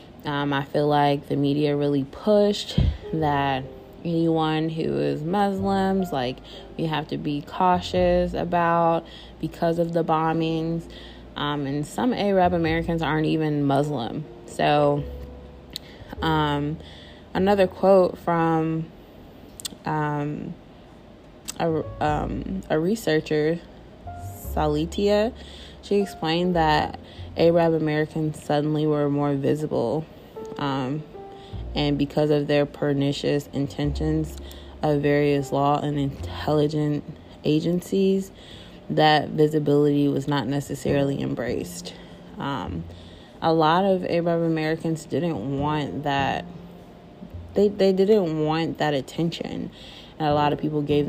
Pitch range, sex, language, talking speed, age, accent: 140-165 Hz, female, English, 110 wpm, 20-39, American